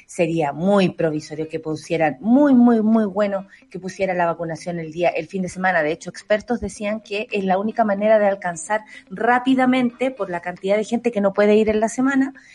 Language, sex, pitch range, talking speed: Spanish, female, 185-245 Hz, 205 wpm